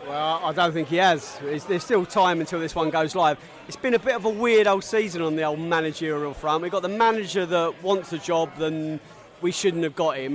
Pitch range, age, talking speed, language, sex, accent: 155-185 Hz, 30-49, 245 wpm, English, male, British